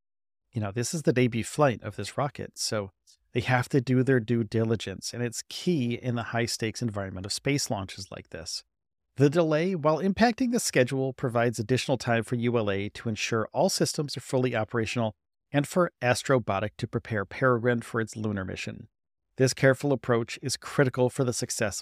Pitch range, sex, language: 105-130 Hz, male, English